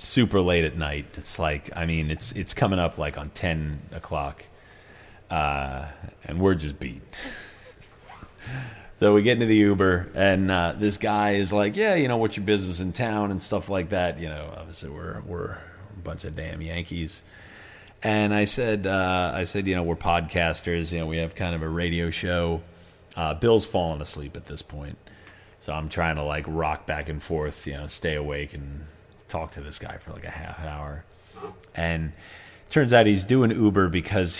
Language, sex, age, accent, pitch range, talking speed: English, male, 30-49, American, 80-100 Hz, 195 wpm